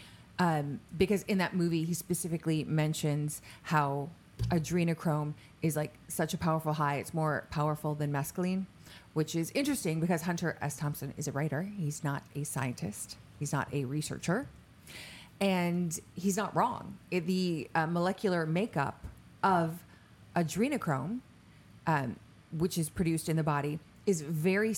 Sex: female